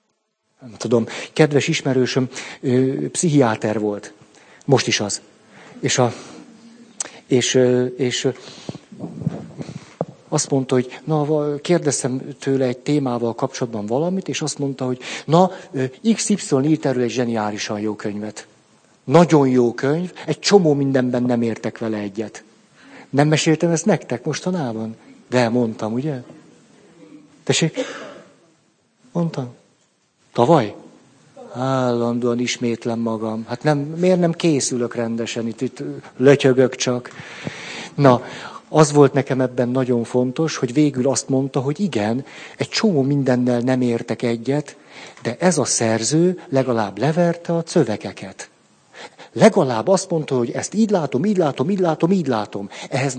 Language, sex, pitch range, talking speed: Hungarian, male, 120-155 Hz, 130 wpm